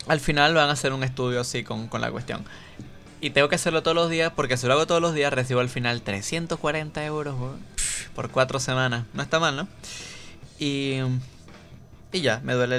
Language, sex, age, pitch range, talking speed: English, male, 20-39, 120-150 Hz, 210 wpm